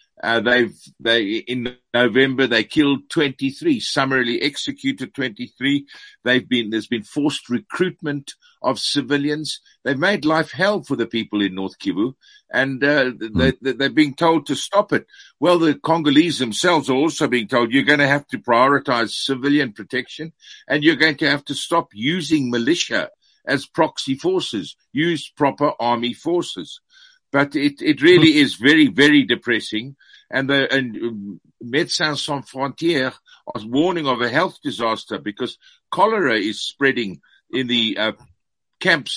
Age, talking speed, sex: 50-69, 150 wpm, male